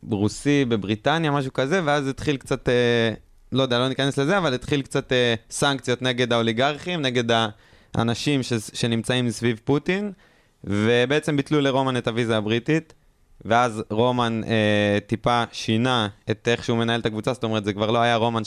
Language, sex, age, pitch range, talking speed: Hebrew, male, 20-39, 110-135 Hz, 155 wpm